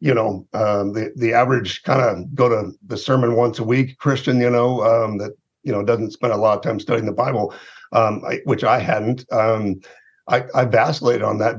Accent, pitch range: American, 115-135 Hz